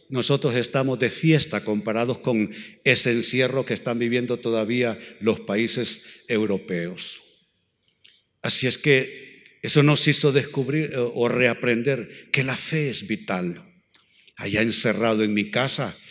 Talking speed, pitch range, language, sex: 125 wpm, 115-140 Hz, Spanish, male